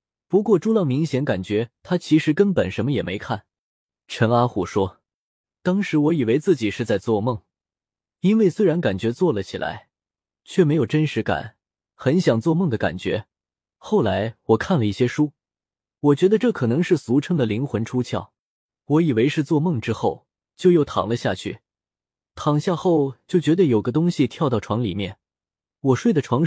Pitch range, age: 110-160 Hz, 20-39